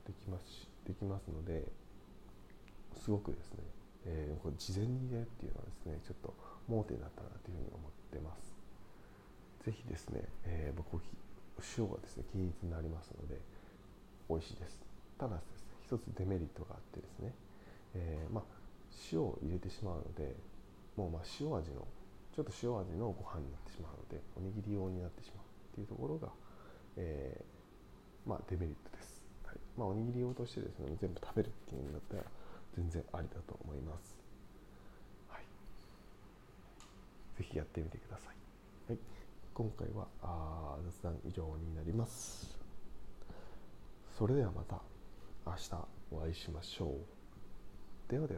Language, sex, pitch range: Japanese, male, 80-100 Hz